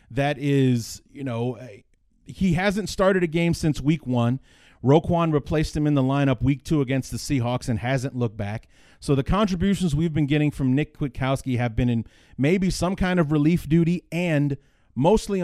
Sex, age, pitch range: male, 30-49, 125-160 Hz